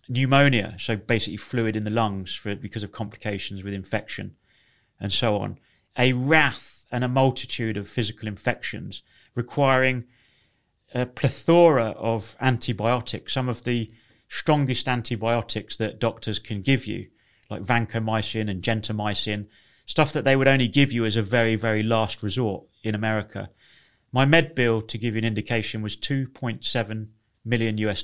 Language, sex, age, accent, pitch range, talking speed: English, male, 30-49, British, 110-125 Hz, 150 wpm